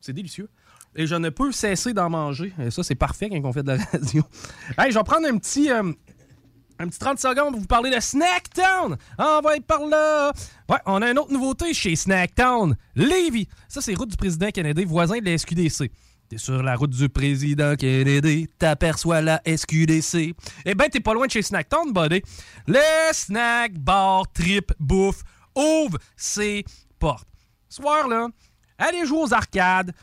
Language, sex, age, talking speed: French, male, 30-49, 180 wpm